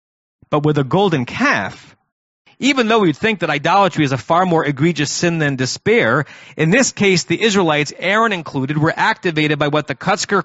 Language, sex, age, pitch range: English, male, 40-59, 150-205 Hz